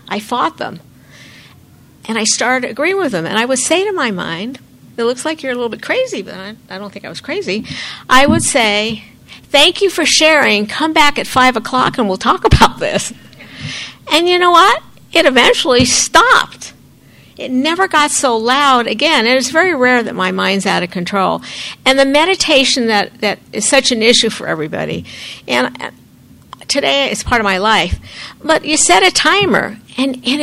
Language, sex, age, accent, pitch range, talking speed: English, female, 60-79, American, 200-275 Hz, 195 wpm